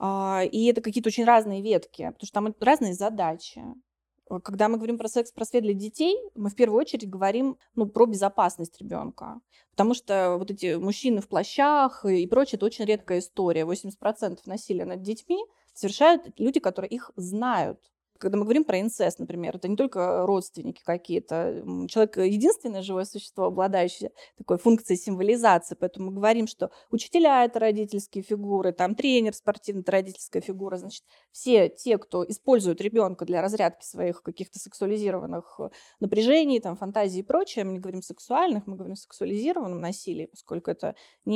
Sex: female